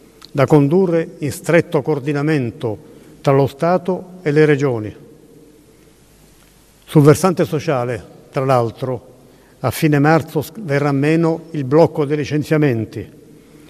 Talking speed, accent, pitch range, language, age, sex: 110 wpm, native, 140-165 Hz, Italian, 50-69, male